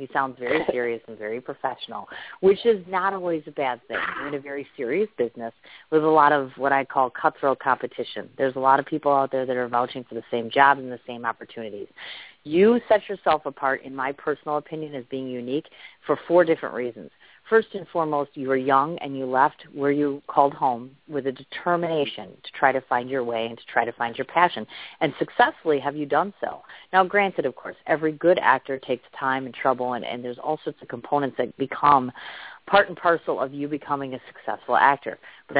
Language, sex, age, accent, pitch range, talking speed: English, female, 30-49, American, 125-155 Hz, 215 wpm